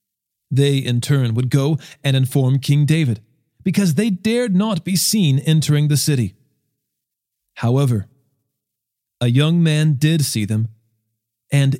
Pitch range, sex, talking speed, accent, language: 120-155 Hz, male, 130 wpm, American, English